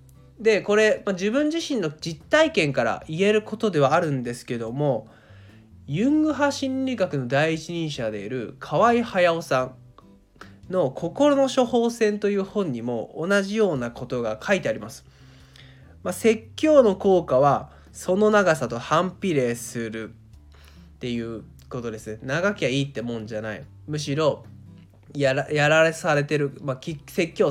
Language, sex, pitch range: Japanese, male, 120-180 Hz